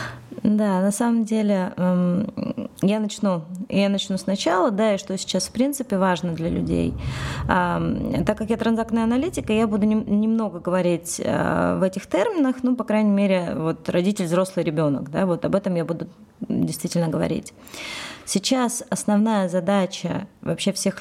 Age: 20-39